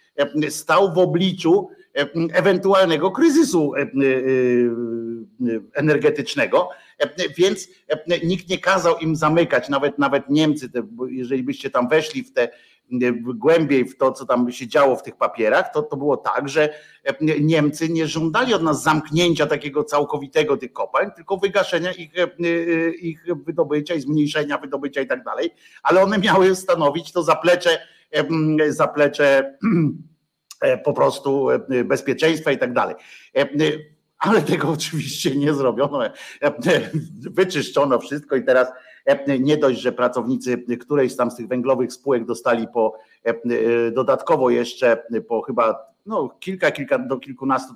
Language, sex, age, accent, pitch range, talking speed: Polish, male, 50-69, native, 130-170 Hz, 125 wpm